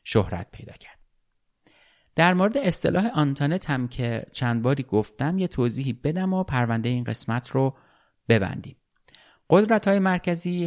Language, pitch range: Persian, 110-150 Hz